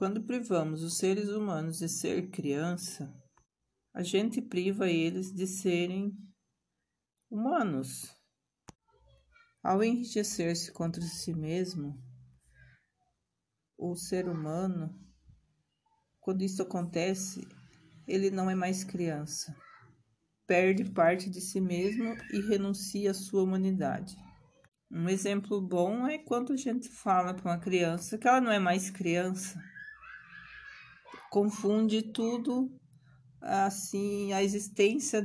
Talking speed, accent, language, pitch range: 105 wpm, Brazilian, Portuguese, 175-205 Hz